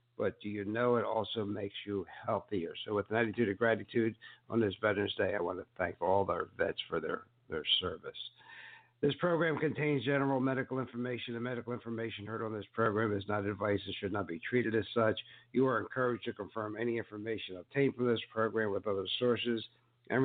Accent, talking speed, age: American, 200 wpm, 60-79